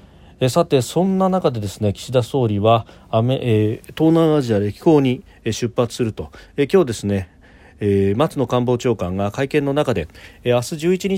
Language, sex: Japanese, male